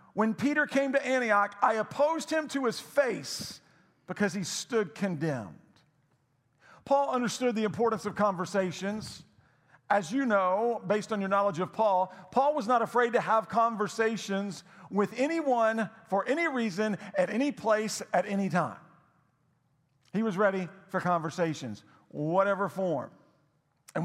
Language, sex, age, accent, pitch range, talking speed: English, male, 50-69, American, 180-235 Hz, 140 wpm